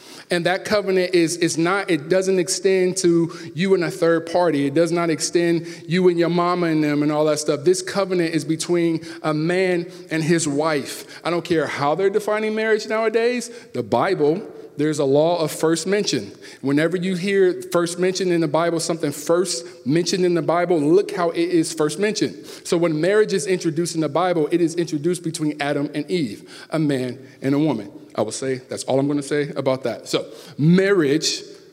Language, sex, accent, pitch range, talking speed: English, male, American, 150-185 Hz, 200 wpm